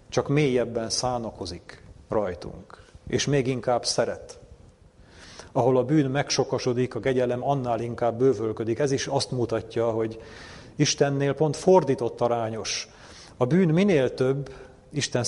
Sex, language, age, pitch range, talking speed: male, Hungarian, 40-59, 115-135 Hz, 120 wpm